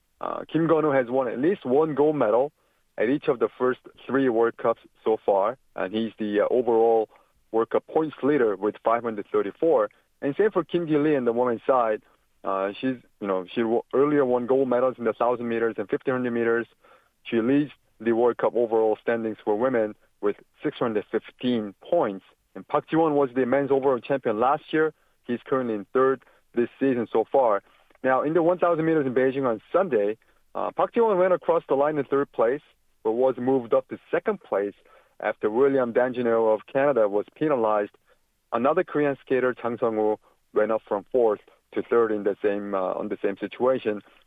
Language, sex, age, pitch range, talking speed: English, male, 30-49, 115-140 Hz, 190 wpm